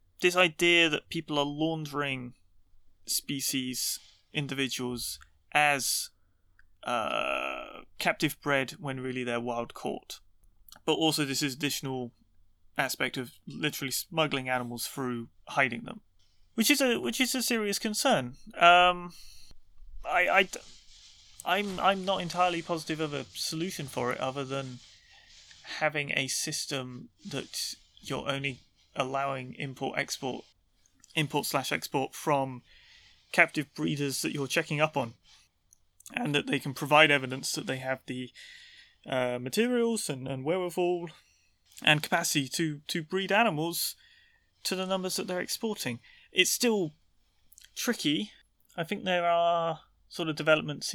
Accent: British